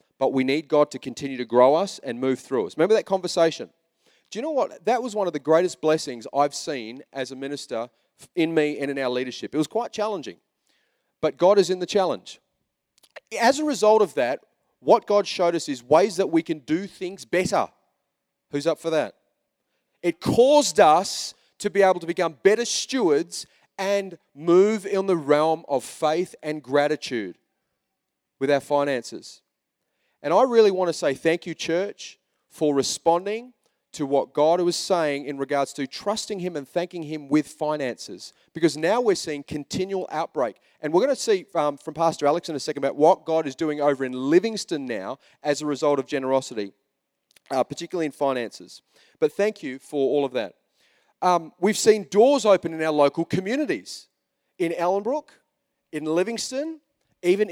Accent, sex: Australian, male